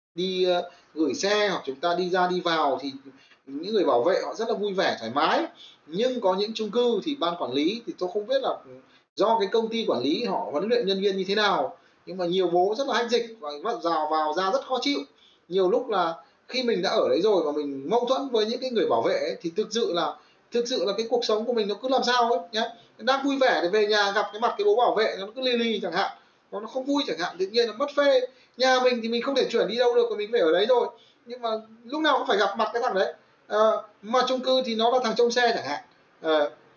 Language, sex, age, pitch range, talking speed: Vietnamese, male, 20-39, 190-260 Hz, 280 wpm